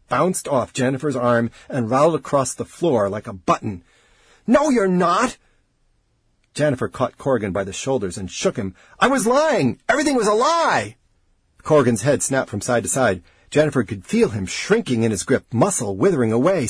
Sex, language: male, English